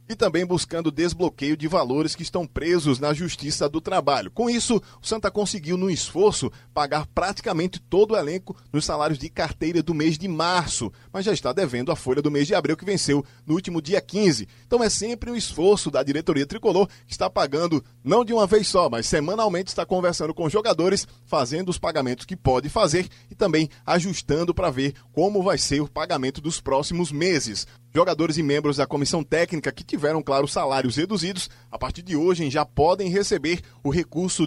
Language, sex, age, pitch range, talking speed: Portuguese, male, 20-39, 140-185 Hz, 195 wpm